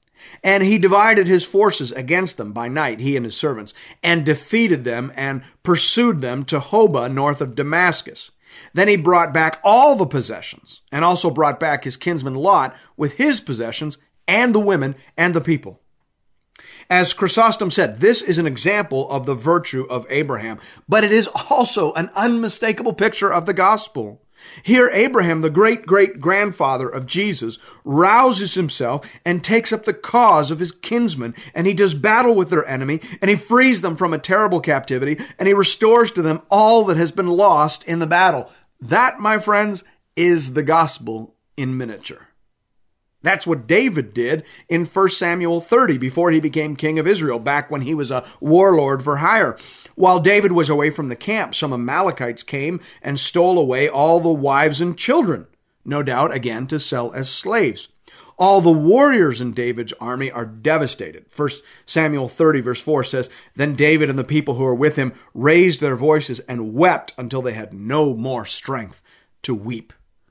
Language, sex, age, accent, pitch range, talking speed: English, male, 40-59, American, 135-190 Hz, 175 wpm